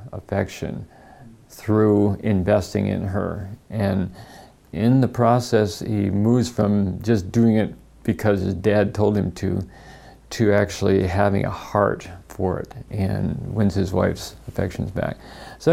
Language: English